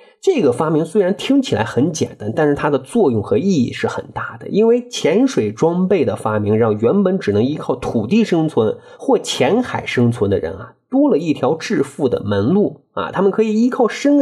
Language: Chinese